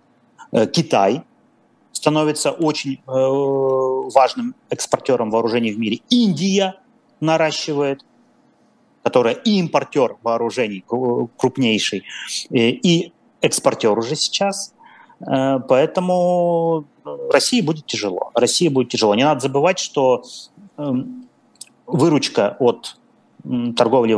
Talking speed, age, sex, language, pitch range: 80 wpm, 30-49, male, Russian, 120-170 Hz